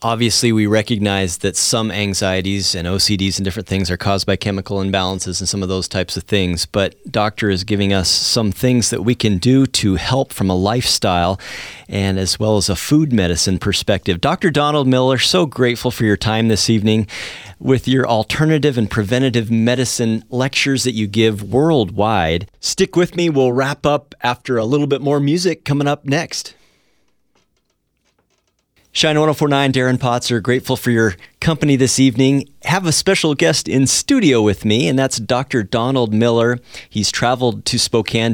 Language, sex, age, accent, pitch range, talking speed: English, male, 40-59, American, 100-130 Hz, 175 wpm